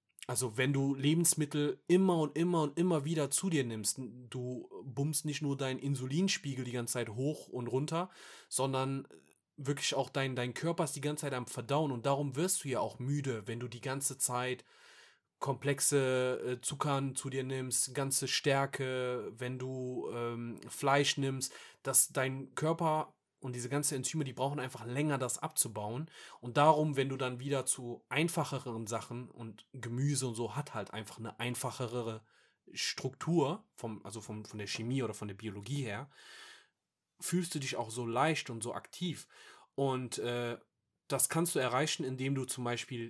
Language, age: German, 30-49